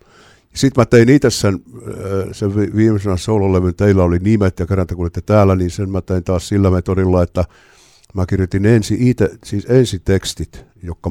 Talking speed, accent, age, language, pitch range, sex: 175 wpm, native, 60-79, Finnish, 90-105 Hz, male